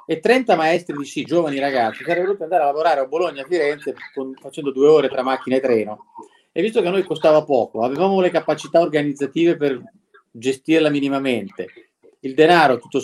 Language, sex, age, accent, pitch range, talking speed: Italian, male, 40-59, native, 135-180 Hz, 190 wpm